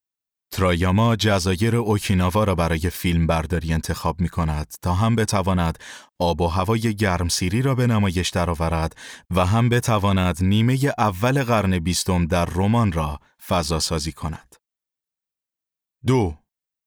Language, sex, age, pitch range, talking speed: Persian, male, 30-49, 85-115 Hz, 125 wpm